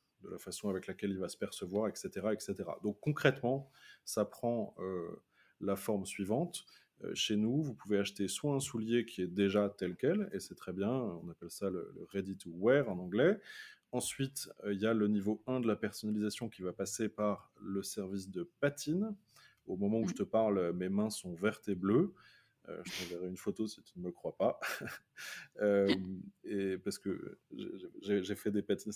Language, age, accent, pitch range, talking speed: French, 20-39, French, 100-115 Hz, 205 wpm